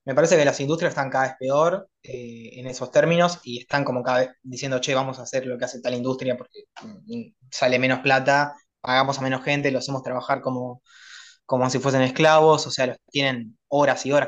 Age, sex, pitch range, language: 20-39, male, 130-165 Hz, Spanish